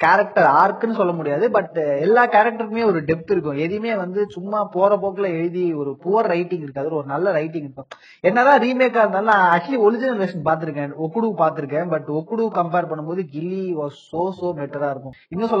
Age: 20-39